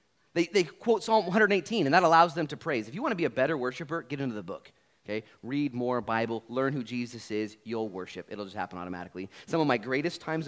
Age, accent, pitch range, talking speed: 30-49, American, 105-160 Hz, 240 wpm